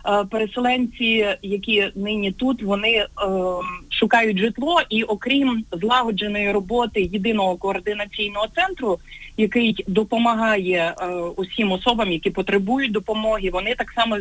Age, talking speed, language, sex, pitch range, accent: 30-49, 110 wpm, Ukrainian, female, 190-245 Hz, native